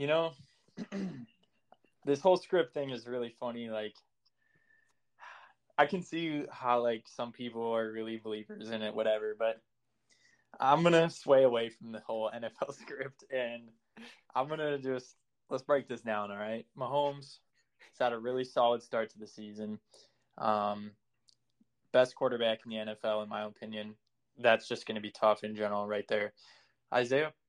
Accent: American